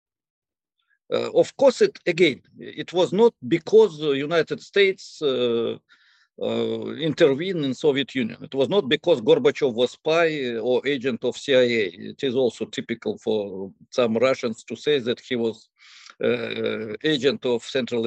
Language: English